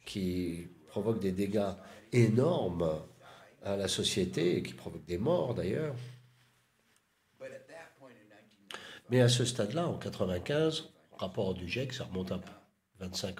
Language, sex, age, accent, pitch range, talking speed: French, male, 50-69, French, 100-125 Hz, 120 wpm